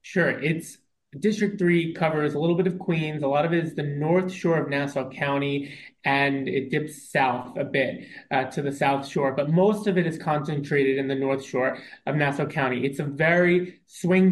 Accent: American